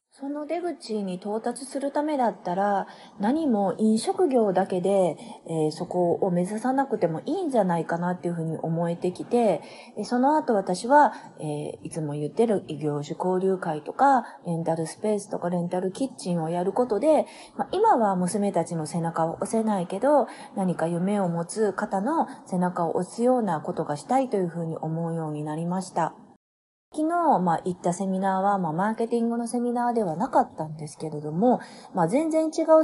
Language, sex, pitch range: Japanese, female, 170-245 Hz